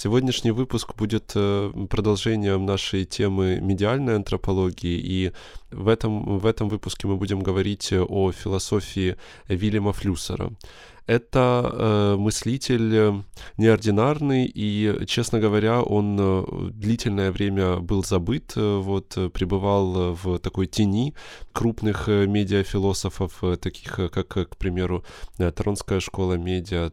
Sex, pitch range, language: male, 95-110 Hz, Russian